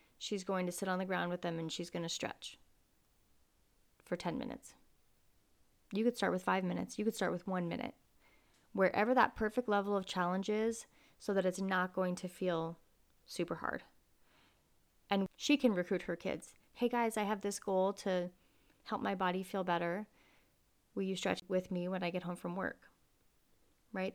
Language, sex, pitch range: English, female, 185-225 Hz